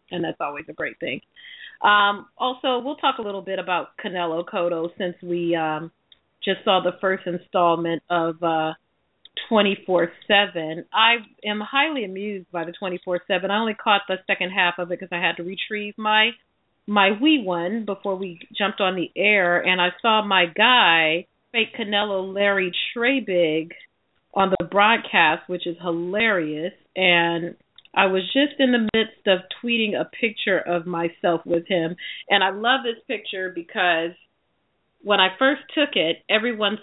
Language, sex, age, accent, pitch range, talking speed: English, female, 40-59, American, 170-205 Hz, 160 wpm